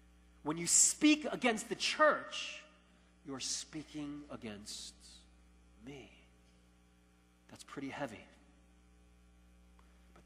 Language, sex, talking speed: English, male, 80 wpm